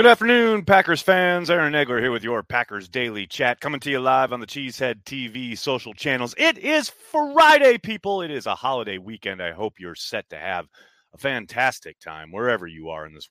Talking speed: 205 wpm